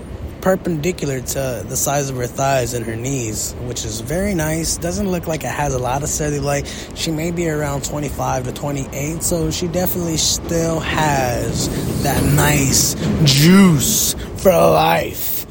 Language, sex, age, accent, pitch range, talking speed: English, male, 20-39, American, 115-165 Hz, 160 wpm